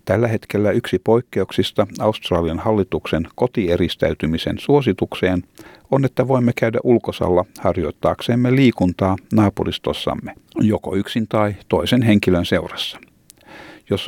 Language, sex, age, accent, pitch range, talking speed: Finnish, male, 60-79, native, 90-120 Hz, 100 wpm